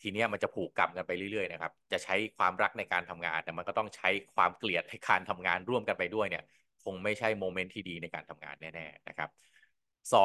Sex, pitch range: male, 85-105 Hz